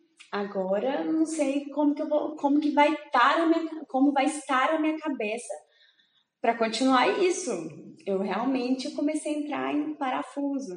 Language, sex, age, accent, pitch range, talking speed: Portuguese, female, 20-39, Brazilian, 200-270 Hz, 160 wpm